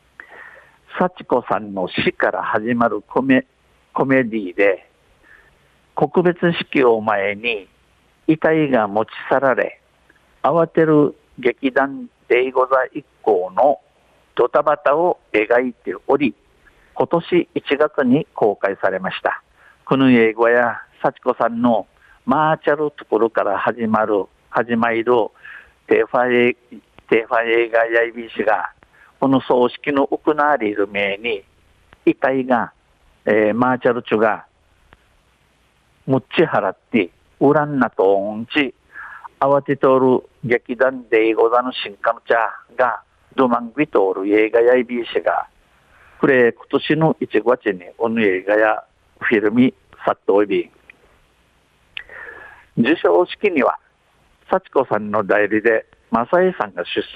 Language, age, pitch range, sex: Japanese, 50-69, 110-150 Hz, male